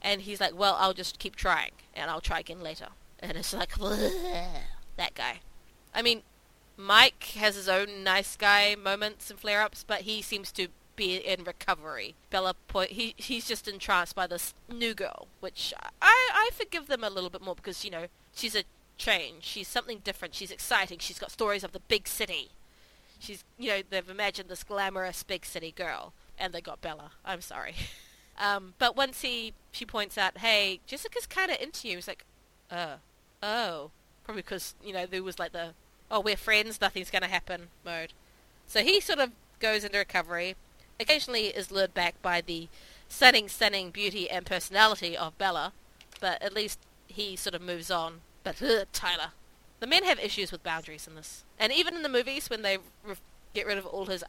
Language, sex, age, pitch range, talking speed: English, female, 20-39, 185-220 Hz, 195 wpm